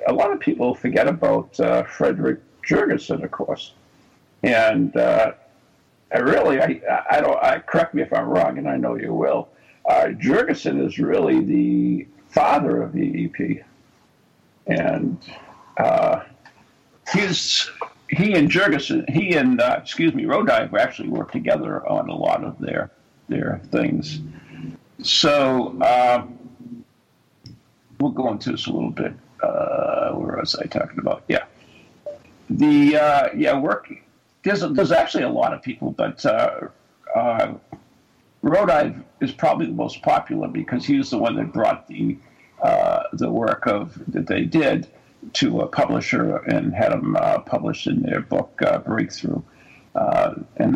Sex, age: male, 60-79